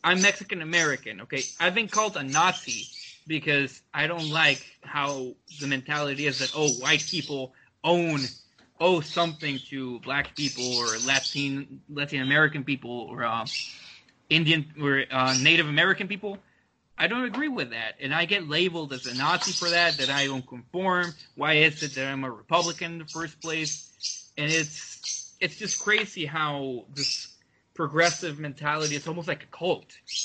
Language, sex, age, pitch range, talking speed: English, male, 20-39, 135-170 Hz, 165 wpm